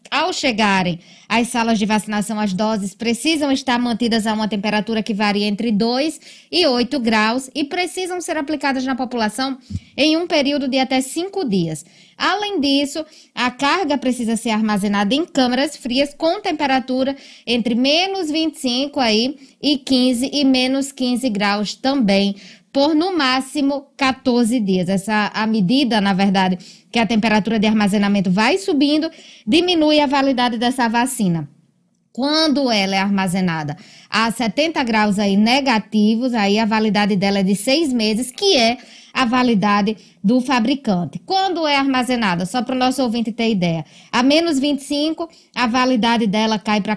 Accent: Brazilian